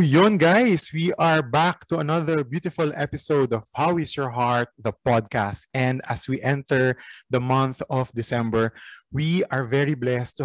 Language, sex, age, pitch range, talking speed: Filipino, male, 20-39, 120-155 Hz, 165 wpm